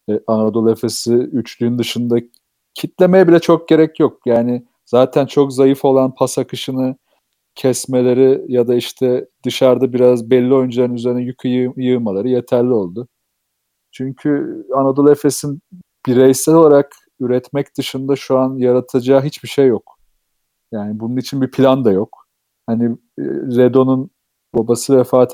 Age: 40-59